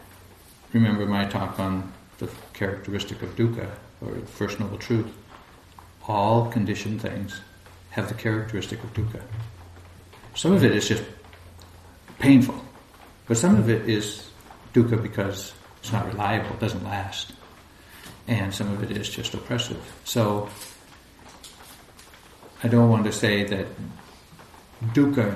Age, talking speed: 60-79, 130 wpm